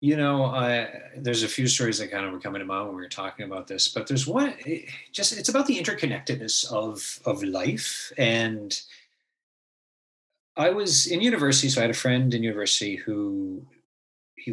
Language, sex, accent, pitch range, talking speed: English, male, American, 105-135 Hz, 185 wpm